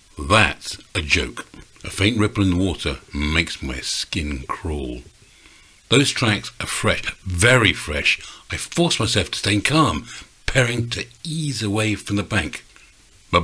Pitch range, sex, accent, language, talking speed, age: 100-140 Hz, male, British, English, 145 wpm, 60-79